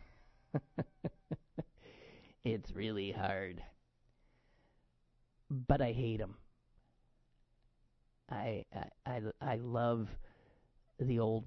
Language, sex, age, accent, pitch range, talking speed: English, male, 40-59, American, 110-145 Hz, 75 wpm